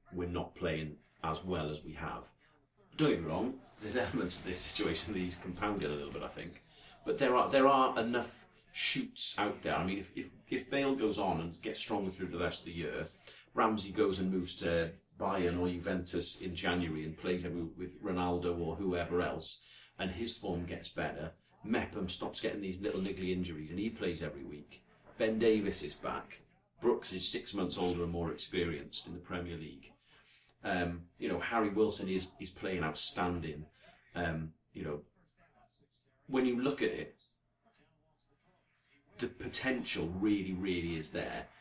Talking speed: 180 wpm